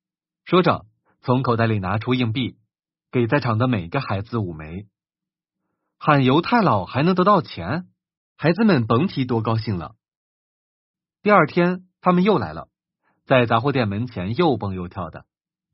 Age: 30-49